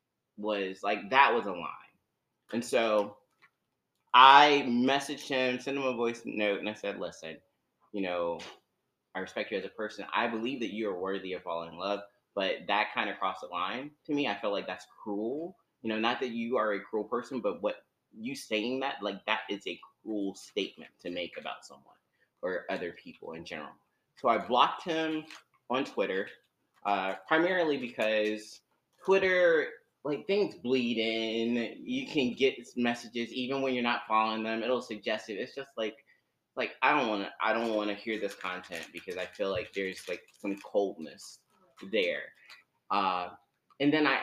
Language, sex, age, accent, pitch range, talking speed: English, male, 30-49, American, 105-140 Hz, 185 wpm